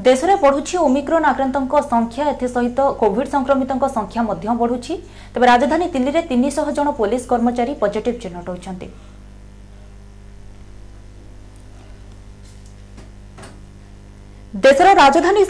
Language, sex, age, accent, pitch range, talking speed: Hindi, female, 30-49, native, 200-275 Hz, 45 wpm